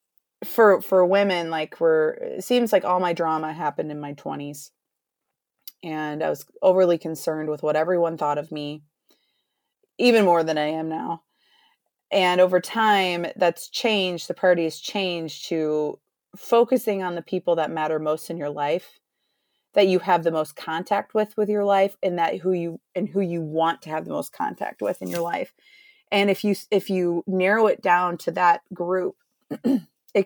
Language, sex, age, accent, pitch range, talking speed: English, female, 30-49, American, 165-210 Hz, 180 wpm